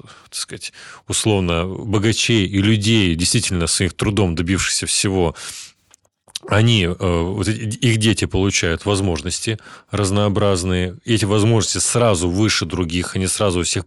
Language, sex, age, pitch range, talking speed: Russian, male, 30-49, 90-110 Hz, 120 wpm